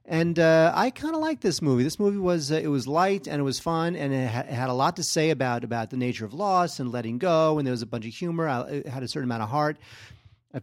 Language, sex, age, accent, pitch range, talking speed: English, male, 40-59, American, 130-170 Hz, 305 wpm